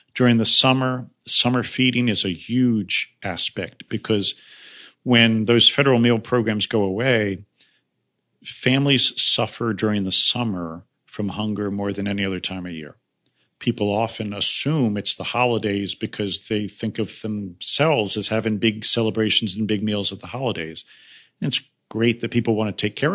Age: 50-69